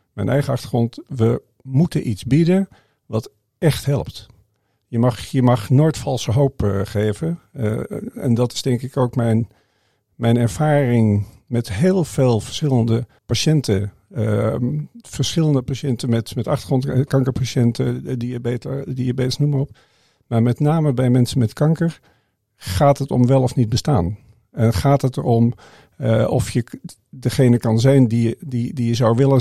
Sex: male